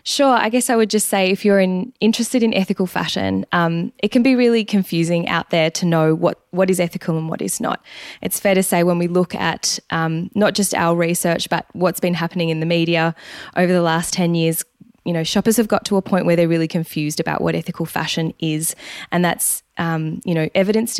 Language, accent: English, Australian